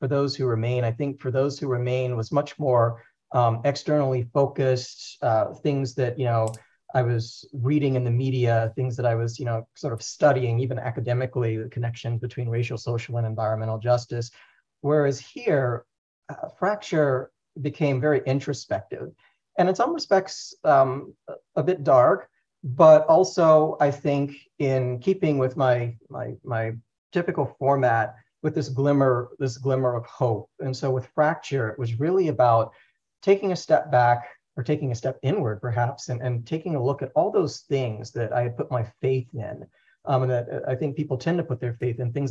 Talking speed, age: 180 wpm, 40-59